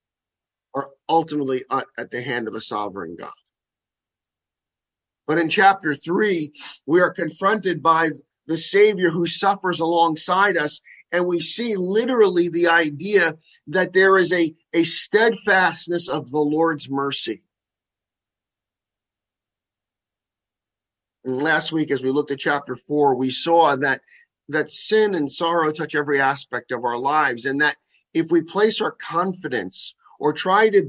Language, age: English, 50-69